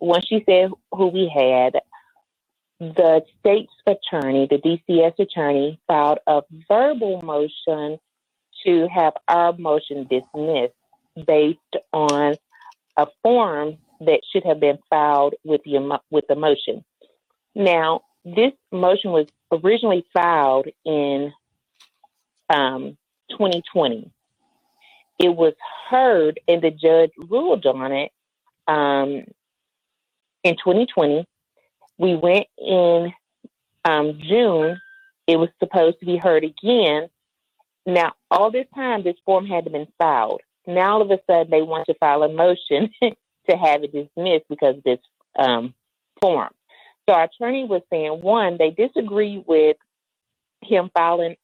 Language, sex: English, female